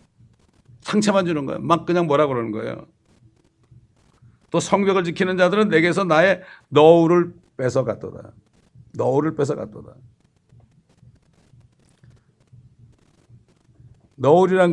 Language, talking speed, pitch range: English, 85 wpm, 115-150 Hz